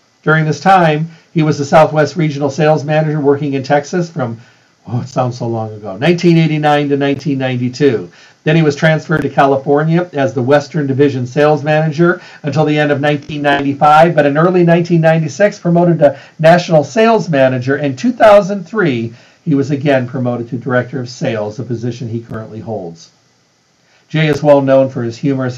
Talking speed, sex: 165 wpm, male